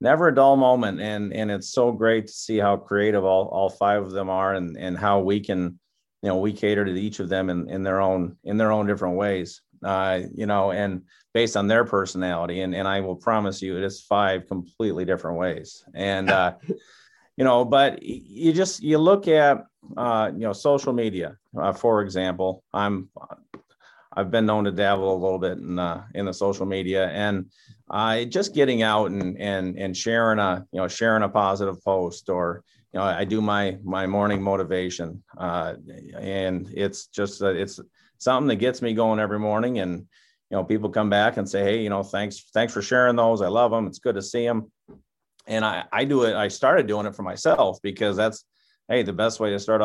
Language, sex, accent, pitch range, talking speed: English, male, American, 95-110 Hz, 210 wpm